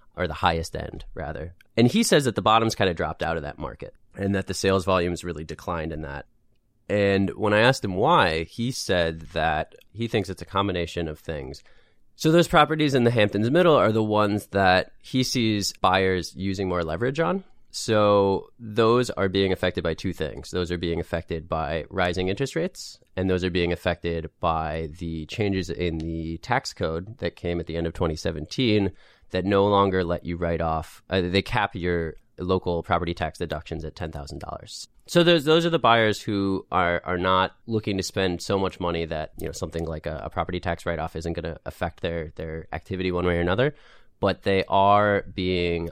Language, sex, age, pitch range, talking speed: English, male, 20-39, 85-100 Hz, 205 wpm